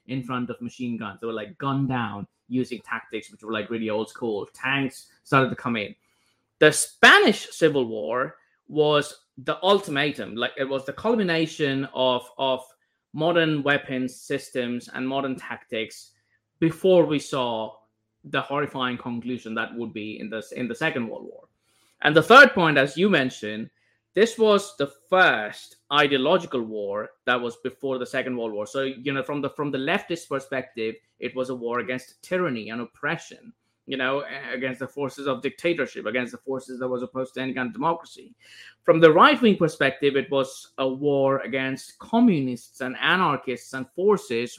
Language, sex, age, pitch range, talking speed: English, male, 20-39, 125-160 Hz, 170 wpm